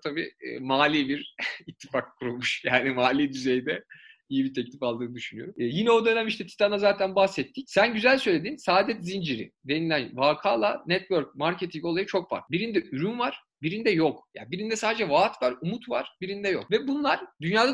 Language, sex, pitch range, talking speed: Turkish, male, 155-225 Hz, 175 wpm